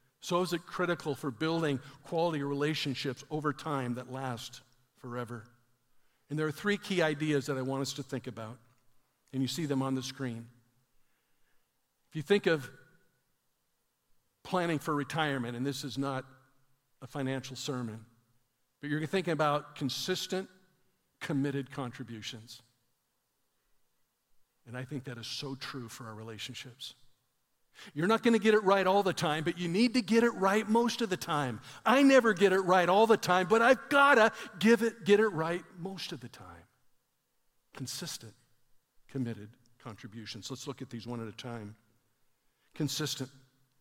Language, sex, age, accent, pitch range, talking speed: English, male, 50-69, American, 125-165 Hz, 160 wpm